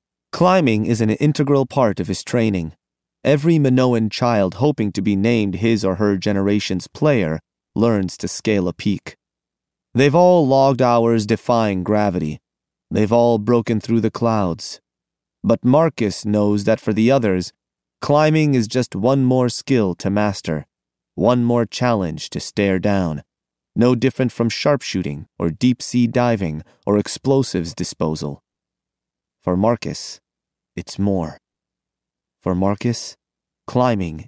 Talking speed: 135 wpm